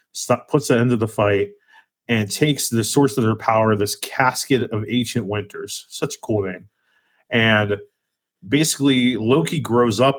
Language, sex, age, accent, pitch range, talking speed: English, male, 30-49, American, 110-130 Hz, 170 wpm